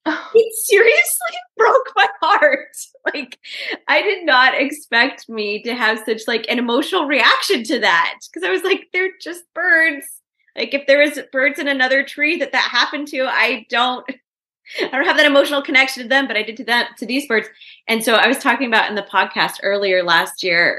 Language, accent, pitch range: English, American, 200-290 Hz